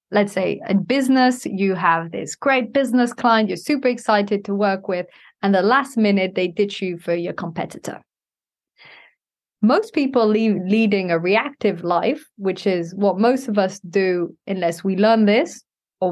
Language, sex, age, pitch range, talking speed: English, female, 20-39, 185-230 Hz, 170 wpm